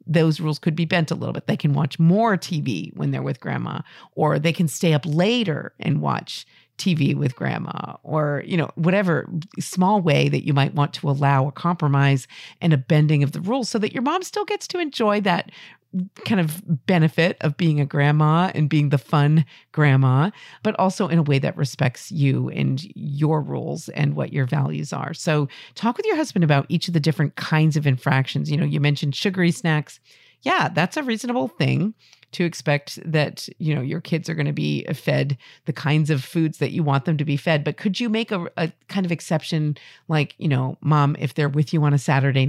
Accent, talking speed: American, 215 wpm